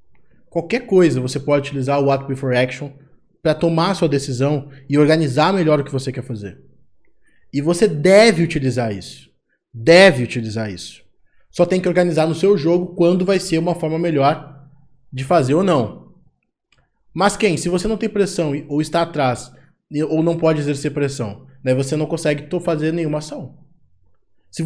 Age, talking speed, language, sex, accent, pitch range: 20-39, 170 wpm, Portuguese, male, Brazilian, 140-200 Hz